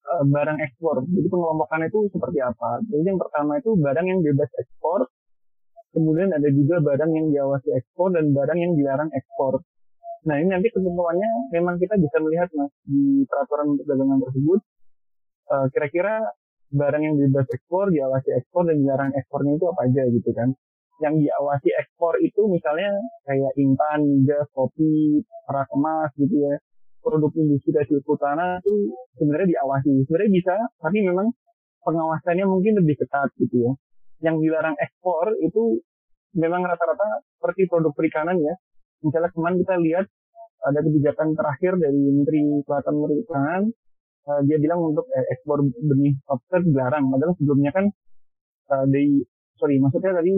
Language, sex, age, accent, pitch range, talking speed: Indonesian, male, 30-49, native, 140-180 Hz, 145 wpm